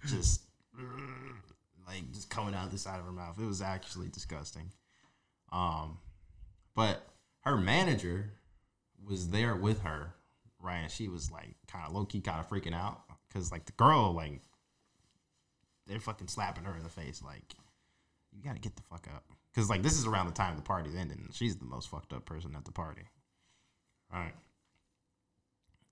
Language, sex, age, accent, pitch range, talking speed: English, male, 20-39, American, 80-100 Hz, 175 wpm